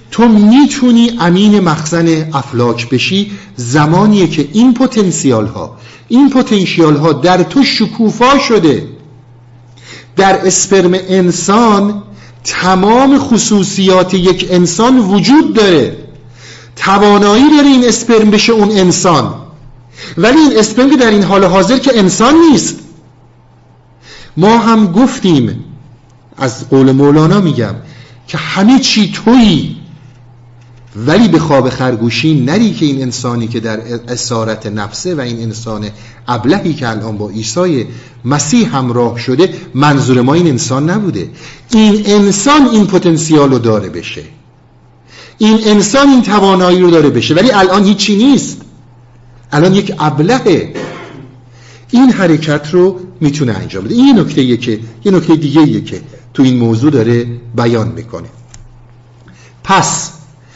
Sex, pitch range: male, 120-205 Hz